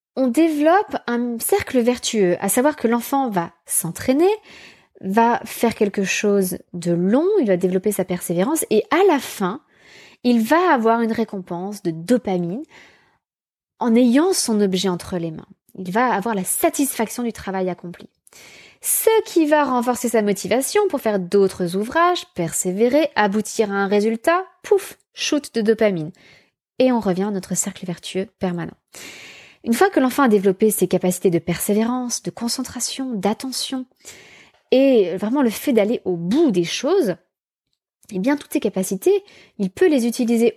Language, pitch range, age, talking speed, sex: French, 195-275 Hz, 20-39, 155 wpm, female